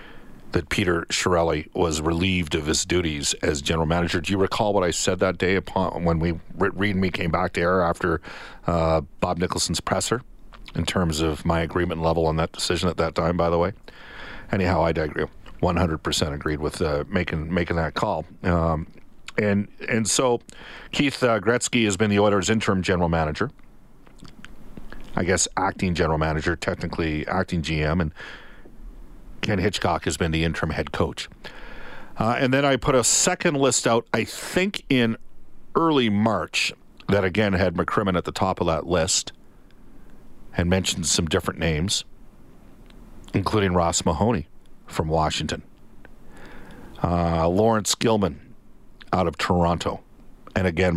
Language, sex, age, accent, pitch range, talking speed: English, male, 40-59, American, 85-105 Hz, 160 wpm